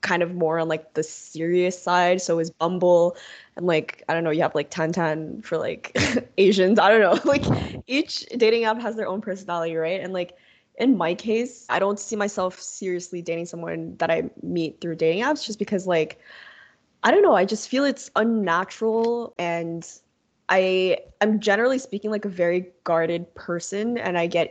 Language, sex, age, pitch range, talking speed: English, female, 20-39, 165-205 Hz, 190 wpm